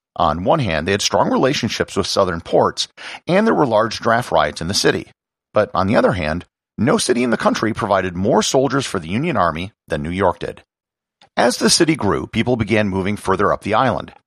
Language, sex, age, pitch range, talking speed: English, male, 40-59, 95-130 Hz, 215 wpm